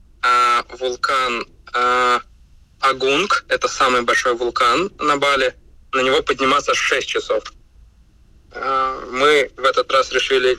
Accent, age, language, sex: native, 20-39, Russian, male